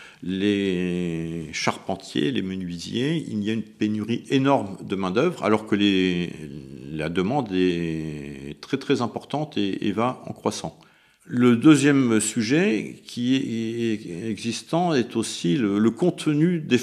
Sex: male